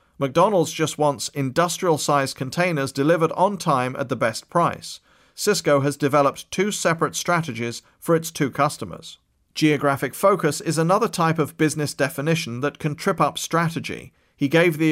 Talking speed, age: 155 wpm, 40-59